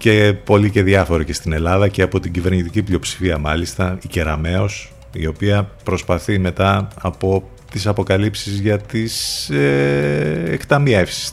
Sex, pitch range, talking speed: male, 90-120 Hz, 140 wpm